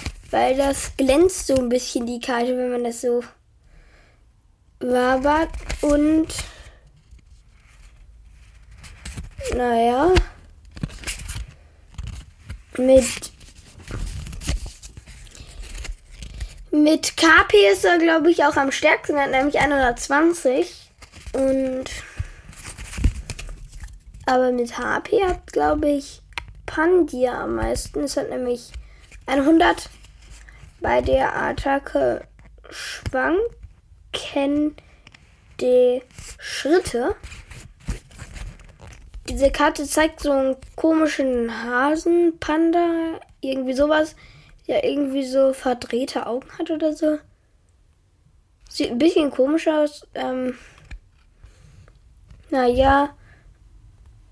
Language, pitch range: German, 235-305 Hz